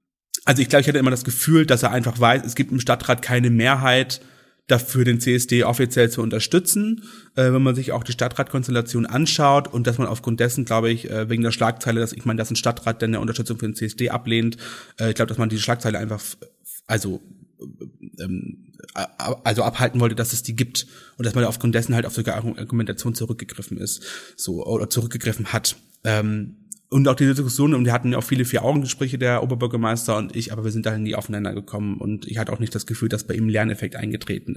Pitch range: 110-130 Hz